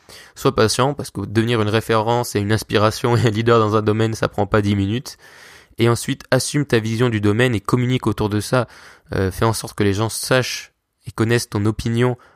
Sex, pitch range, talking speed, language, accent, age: male, 105-125 Hz, 220 wpm, French, French, 20-39